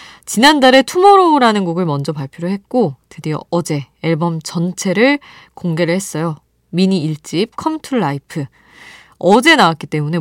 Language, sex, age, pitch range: Korean, female, 20-39, 155-235 Hz